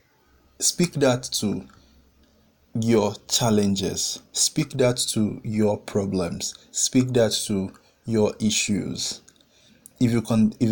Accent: Nigerian